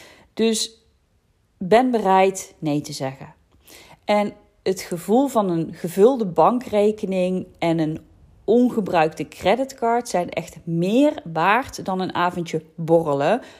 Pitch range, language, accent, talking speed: 165-220 Hz, Dutch, Dutch, 110 wpm